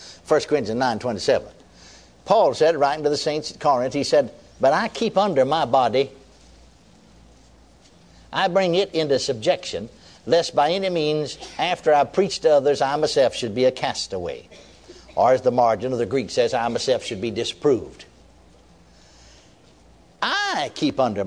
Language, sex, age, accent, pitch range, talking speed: English, male, 60-79, American, 120-195 Hz, 160 wpm